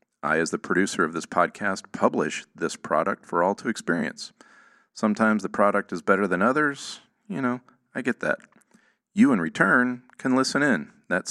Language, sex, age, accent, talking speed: English, male, 40-59, American, 175 wpm